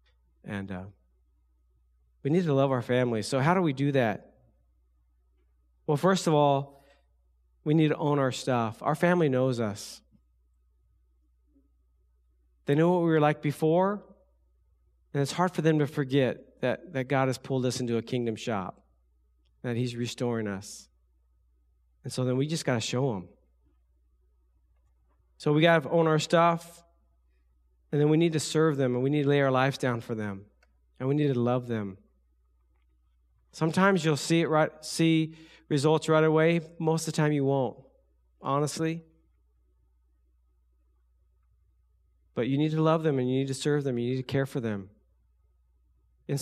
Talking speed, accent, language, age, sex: 170 wpm, American, English, 40-59, male